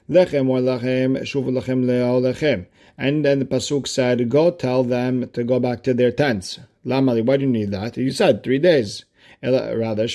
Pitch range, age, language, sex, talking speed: 115-145 Hz, 40-59, English, male, 135 wpm